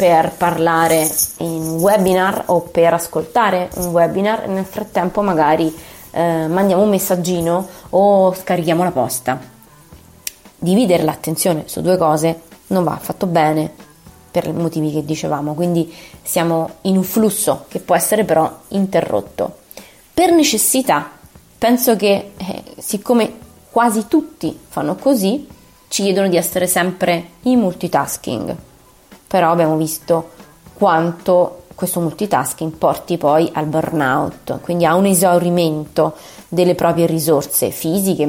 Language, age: Italian, 20-39